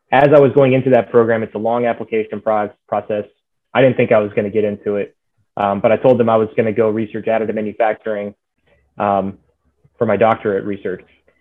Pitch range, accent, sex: 105-125 Hz, American, male